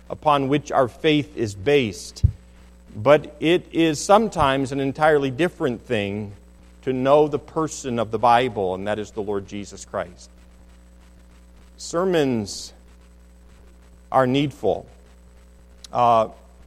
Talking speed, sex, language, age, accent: 115 wpm, male, English, 50-69, American